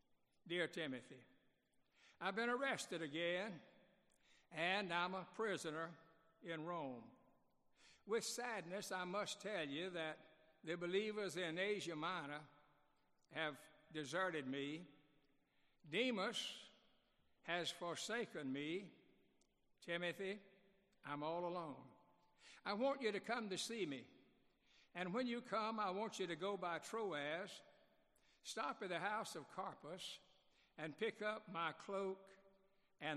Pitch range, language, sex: 160-195 Hz, English, male